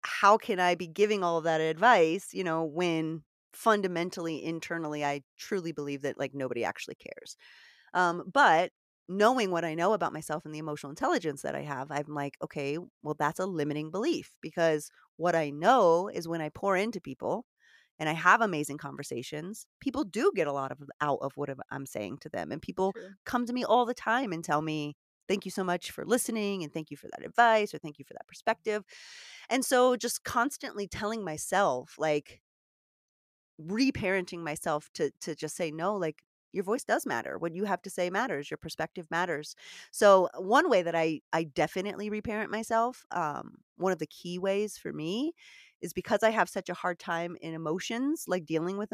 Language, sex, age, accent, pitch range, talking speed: English, female, 30-49, American, 155-210 Hz, 195 wpm